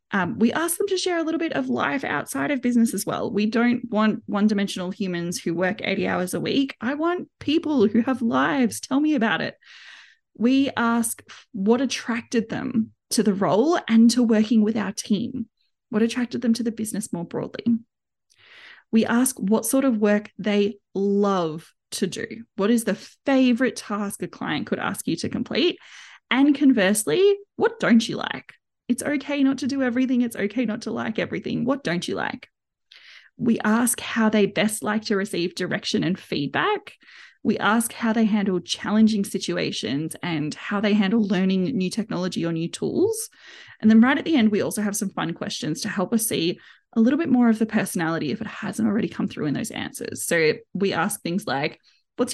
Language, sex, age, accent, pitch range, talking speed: English, female, 20-39, Australian, 205-255 Hz, 195 wpm